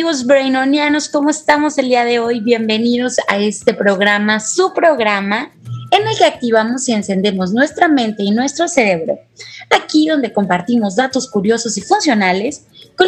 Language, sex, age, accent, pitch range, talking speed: Spanish, female, 20-39, Mexican, 215-285 Hz, 150 wpm